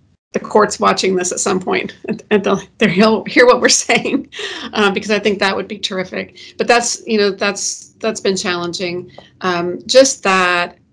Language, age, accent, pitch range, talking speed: English, 40-59, American, 180-205 Hz, 180 wpm